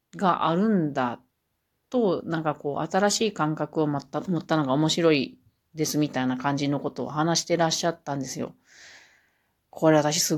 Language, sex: Japanese, female